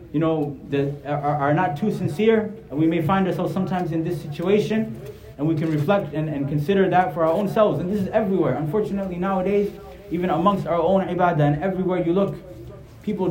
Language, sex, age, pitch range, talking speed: English, male, 20-39, 150-190 Hz, 205 wpm